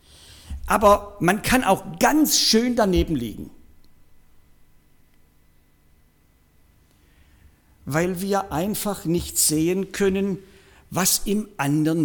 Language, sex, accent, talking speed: German, male, German, 85 wpm